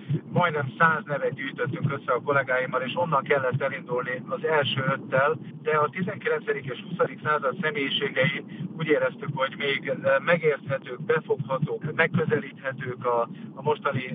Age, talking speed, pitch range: 50-69, 130 wpm, 135-165 Hz